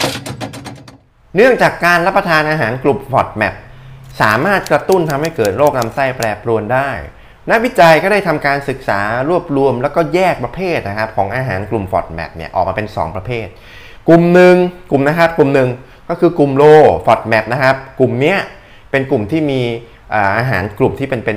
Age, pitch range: 20-39, 110-155 Hz